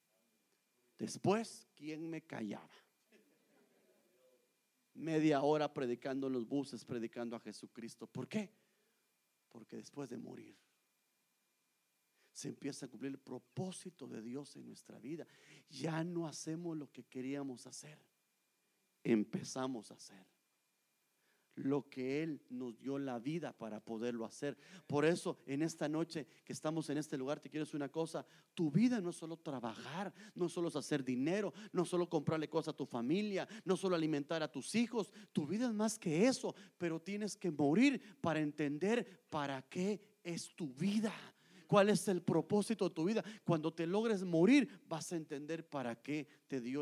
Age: 40-59